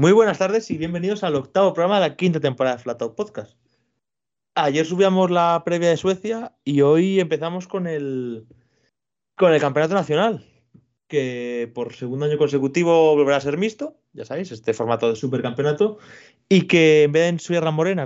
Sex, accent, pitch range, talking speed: male, Spanish, 120-165 Hz, 175 wpm